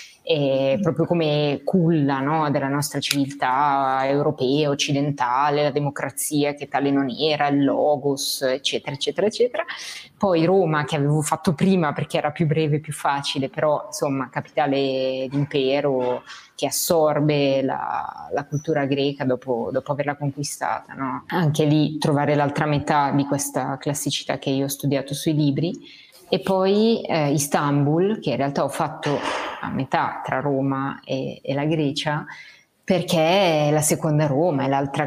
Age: 20-39